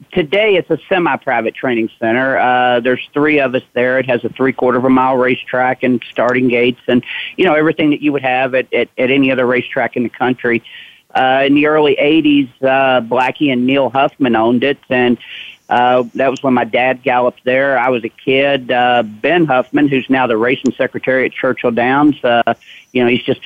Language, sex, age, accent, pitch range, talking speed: English, male, 40-59, American, 125-140 Hz, 205 wpm